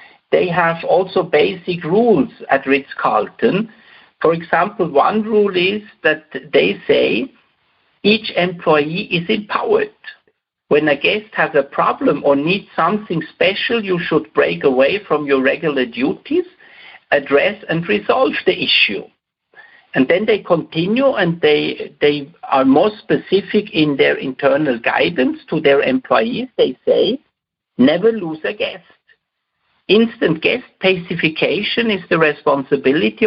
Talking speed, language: 130 wpm, English